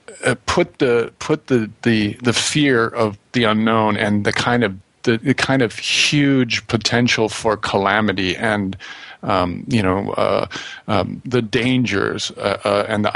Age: 40-59